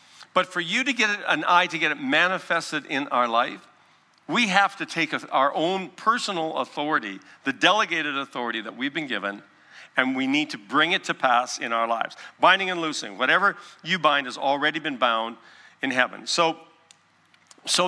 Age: 50-69